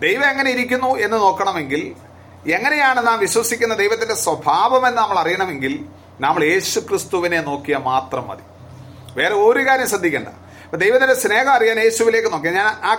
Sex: male